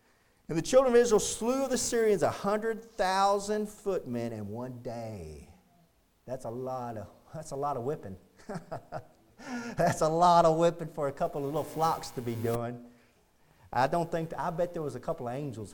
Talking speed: 185 wpm